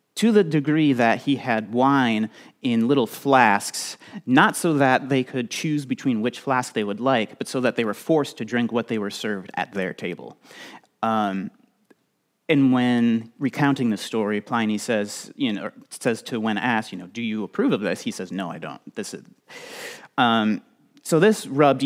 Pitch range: 110-155 Hz